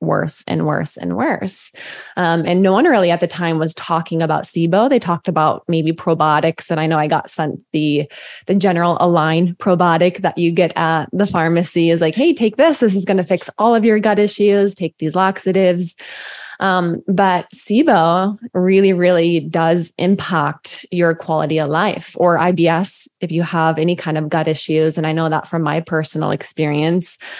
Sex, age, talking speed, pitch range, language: female, 20-39, 190 wpm, 160-185 Hz, English